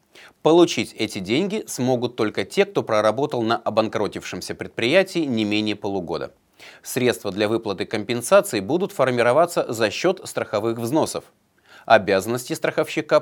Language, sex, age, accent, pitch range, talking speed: Russian, male, 30-49, native, 105-155 Hz, 120 wpm